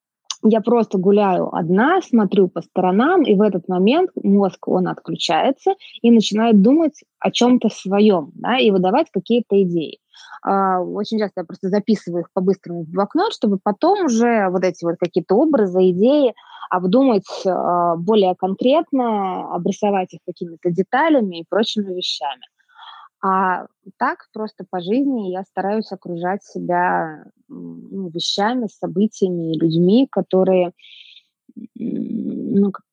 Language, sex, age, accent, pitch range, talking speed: Russian, female, 20-39, native, 180-220 Hz, 125 wpm